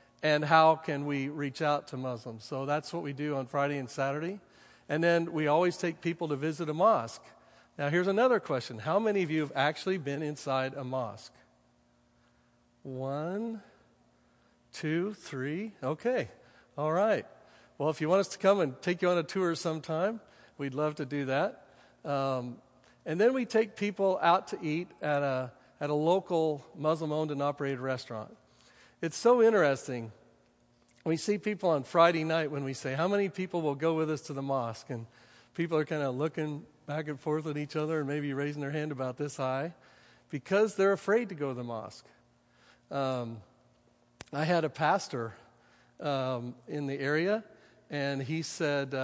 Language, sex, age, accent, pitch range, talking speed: English, male, 50-69, American, 135-170 Hz, 175 wpm